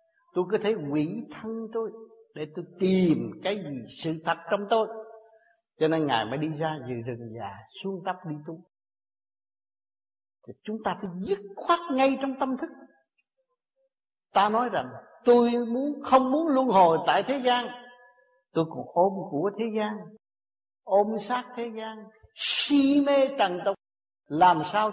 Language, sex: Vietnamese, male